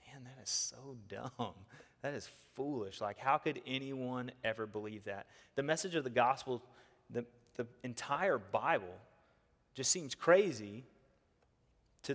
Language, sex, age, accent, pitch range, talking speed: English, male, 30-49, American, 125-160 Hz, 135 wpm